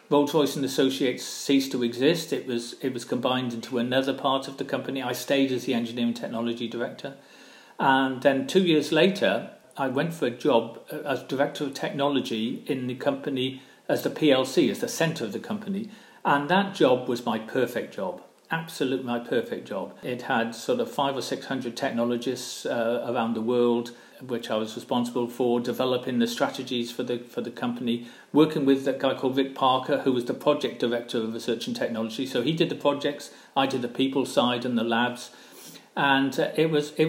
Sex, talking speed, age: male, 195 wpm, 50-69